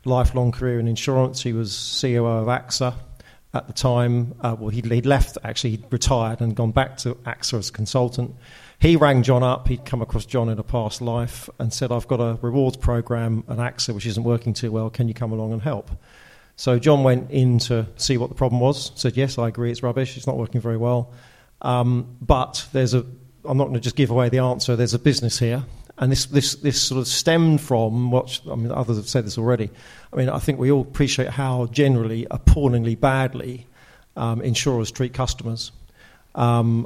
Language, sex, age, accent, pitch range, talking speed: English, male, 40-59, British, 120-130 Hz, 210 wpm